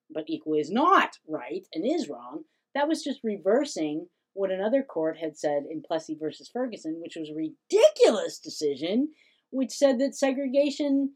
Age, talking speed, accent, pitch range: 40-59, 160 wpm, American, 155-255 Hz